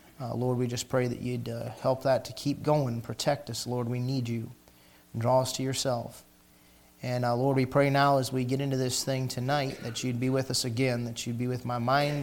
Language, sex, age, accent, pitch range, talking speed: English, male, 30-49, American, 120-135 Hz, 240 wpm